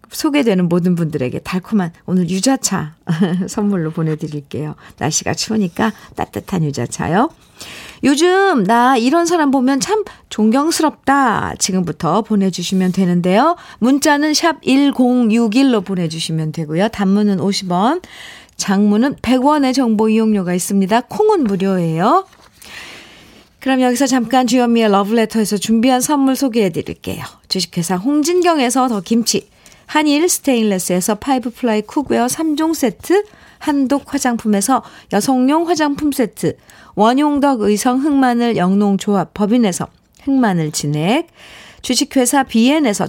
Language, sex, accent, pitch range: Korean, female, native, 185-270 Hz